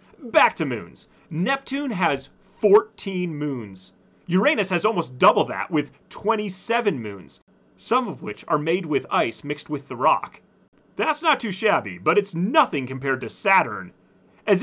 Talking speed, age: 150 wpm, 30-49